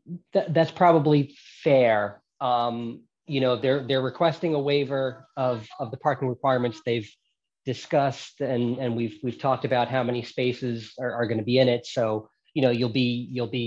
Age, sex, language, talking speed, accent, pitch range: 20-39, male, English, 185 wpm, American, 110-130 Hz